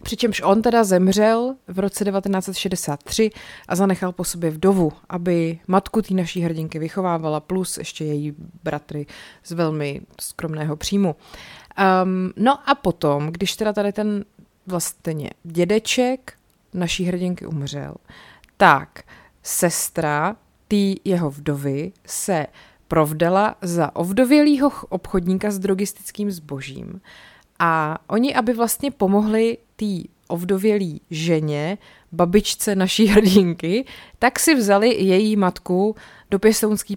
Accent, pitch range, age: native, 165-205 Hz, 30-49